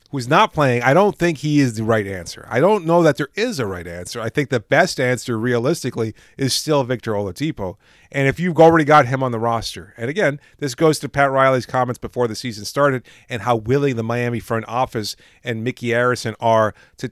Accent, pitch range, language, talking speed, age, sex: American, 115-150 Hz, English, 220 wpm, 30-49, male